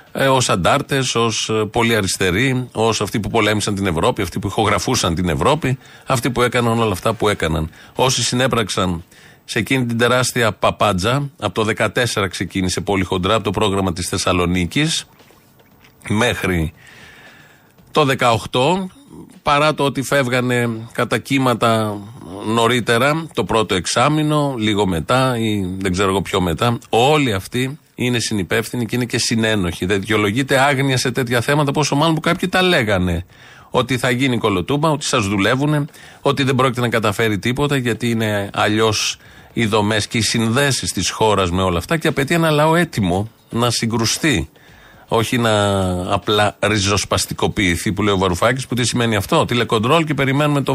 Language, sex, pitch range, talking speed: Greek, male, 105-135 Hz, 155 wpm